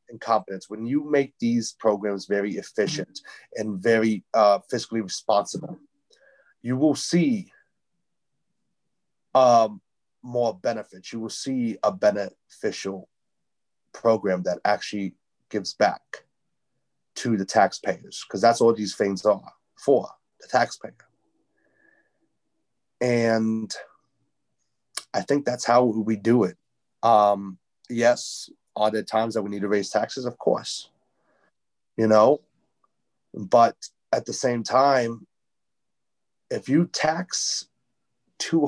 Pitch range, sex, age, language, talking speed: 105-135 Hz, male, 30-49, English, 115 wpm